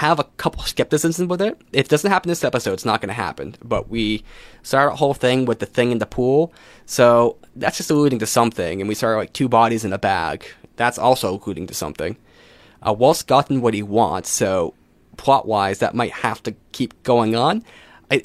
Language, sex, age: English, male, 20-39